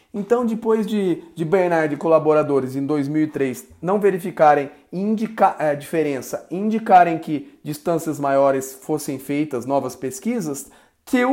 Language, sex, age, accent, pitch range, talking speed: Portuguese, male, 30-49, Brazilian, 150-215 Hz, 125 wpm